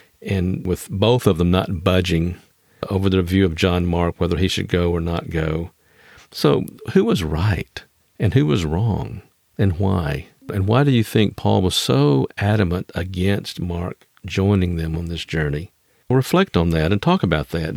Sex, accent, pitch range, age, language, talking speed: male, American, 90-110 Hz, 50-69, English, 180 wpm